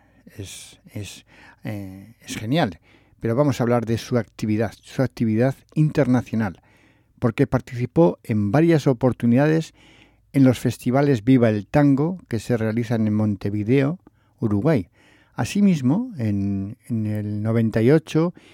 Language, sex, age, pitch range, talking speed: English, male, 60-79, 110-135 Hz, 115 wpm